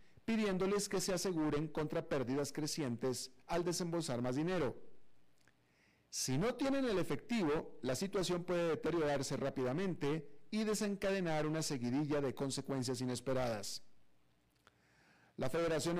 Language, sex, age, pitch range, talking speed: Spanish, male, 40-59, 130-180 Hz, 115 wpm